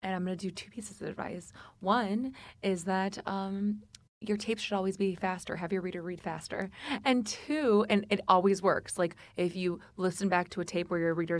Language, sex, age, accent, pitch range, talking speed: English, female, 20-39, American, 175-205 Hz, 215 wpm